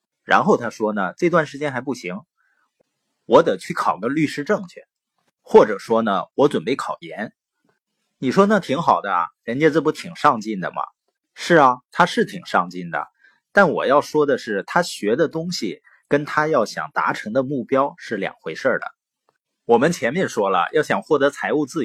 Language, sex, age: Chinese, male, 30-49